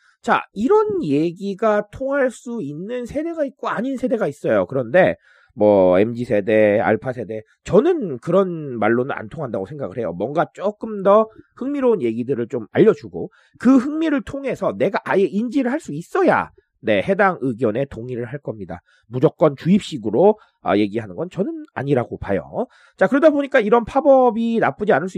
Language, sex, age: Korean, male, 30-49